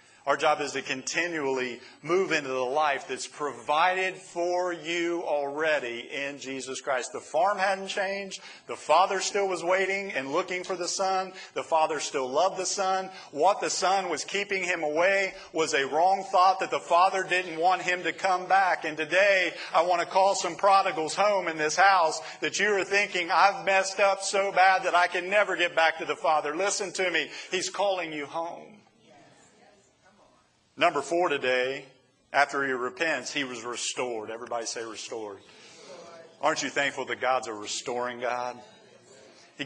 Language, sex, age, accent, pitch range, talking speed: English, male, 50-69, American, 140-190 Hz, 175 wpm